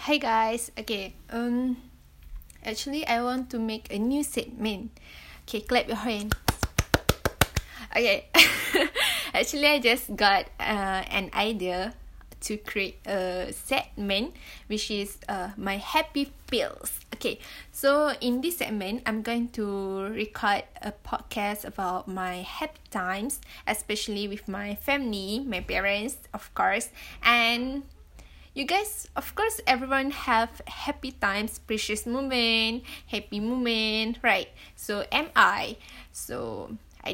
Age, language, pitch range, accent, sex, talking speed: 20-39, English, 200-245 Hz, Malaysian, female, 125 wpm